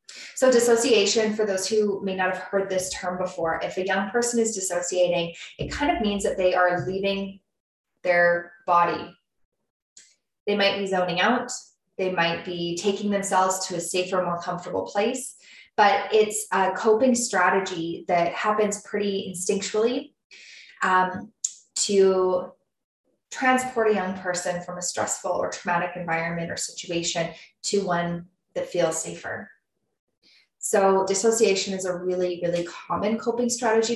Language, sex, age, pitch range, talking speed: English, female, 10-29, 175-215 Hz, 145 wpm